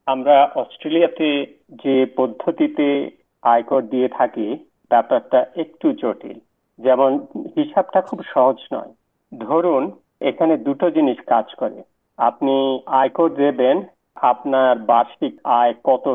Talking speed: 40 wpm